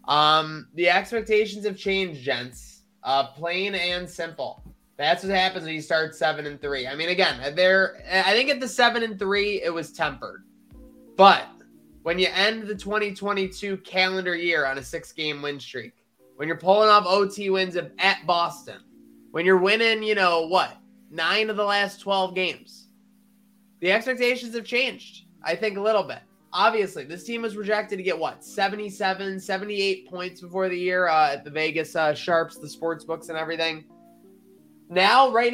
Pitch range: 155-210 Hz